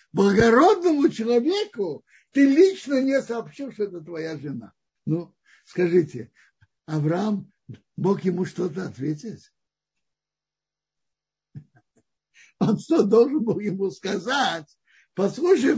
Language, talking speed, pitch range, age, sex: Russian, 90 wpm, 185-275 Hz, 60-79, male